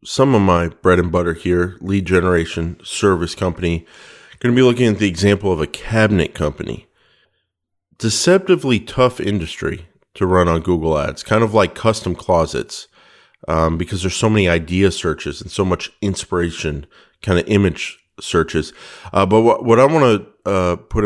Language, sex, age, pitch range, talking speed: English, male, 40-59, 85-100 Hz, 165 wpm